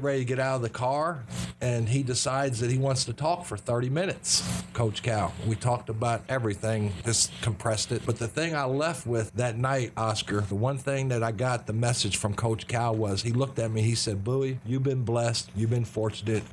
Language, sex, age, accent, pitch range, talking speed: English, male, 50-69, American, 110-135 Hz, 220 wpm